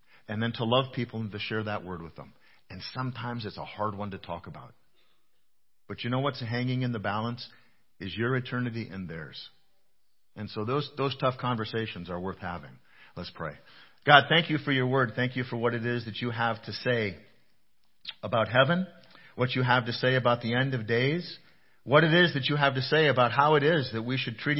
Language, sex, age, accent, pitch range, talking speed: English, male, 50-69, American, 115-140 Hz, 220 wpm